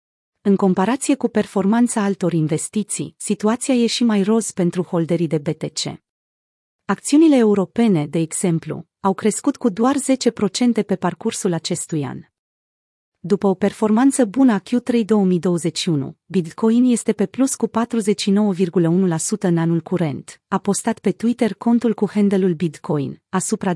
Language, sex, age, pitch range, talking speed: Romanian, female, 30-49, 175-225 Hz, 135 wpm